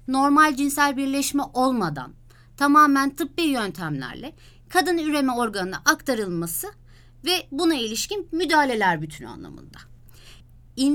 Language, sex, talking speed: Turkish, female, 100 wpm